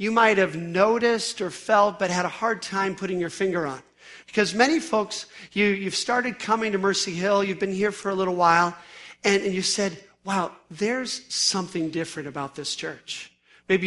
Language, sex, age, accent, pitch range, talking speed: English, male, 50-69, American, 175-210 Hz, 185 wpm